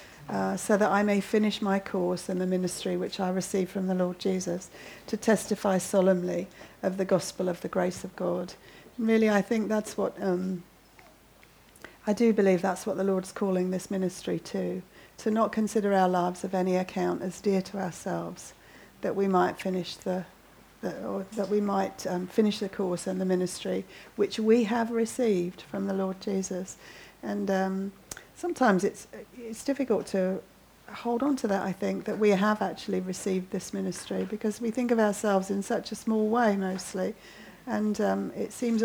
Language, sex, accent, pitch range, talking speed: English, female, British, 185-215 Hz, 190 wpm